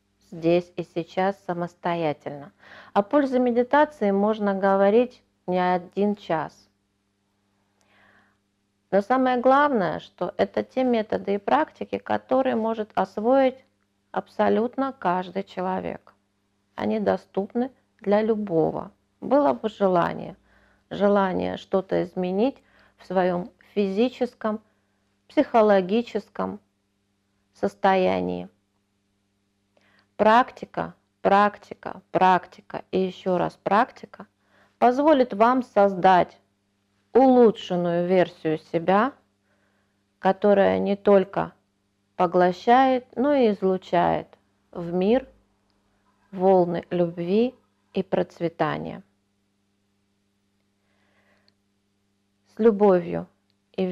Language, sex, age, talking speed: Russian, female, 40-59, 80 wpm